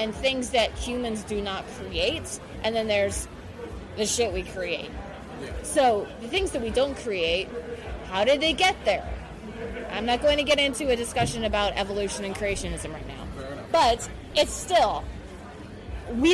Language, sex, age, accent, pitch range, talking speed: English, female, 20-39, American, 200-250 Hz, 160 wpm